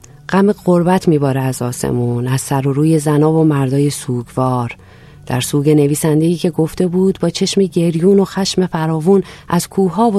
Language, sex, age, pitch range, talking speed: Persian, female, 40-59, 130-170 Hz, 165 wpm